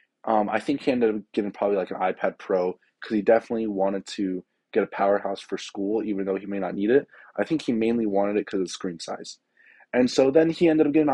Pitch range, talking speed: 110-150 Hz, 255 wpm